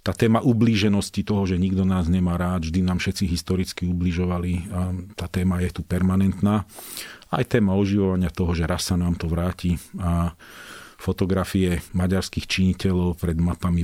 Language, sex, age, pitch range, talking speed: Slovak, male, 40-59, 90-100 Hz, 150 wpm